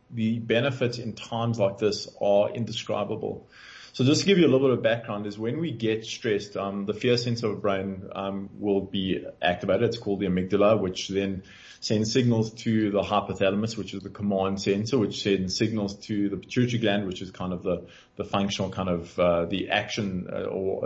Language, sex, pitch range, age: English, male, 100-115 Hz, 30-49